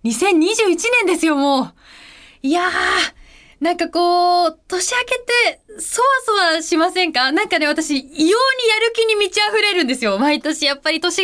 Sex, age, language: female, 20-39, Japanese